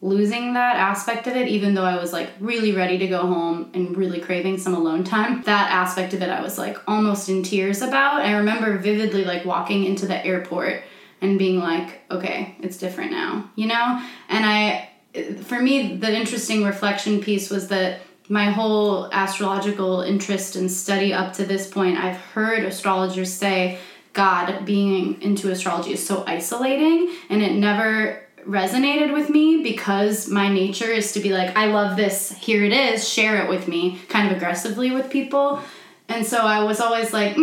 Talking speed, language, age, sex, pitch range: 185 wpm, English, 20-39, female, 185-215 Hz